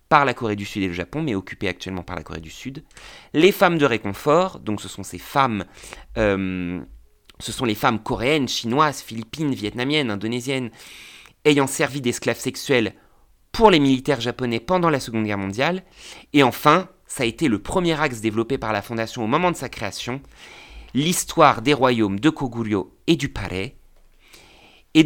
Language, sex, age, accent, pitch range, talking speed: French, male, 30-49, French, 105-145 Hz, 175 wpm